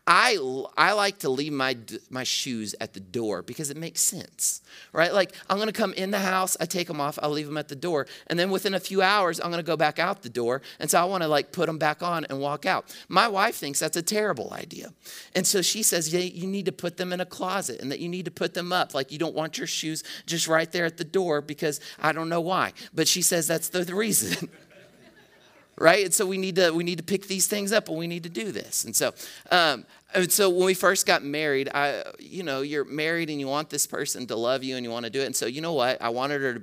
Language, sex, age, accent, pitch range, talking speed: English, male, 30-49, American, 125-180 Hz, 280 wpm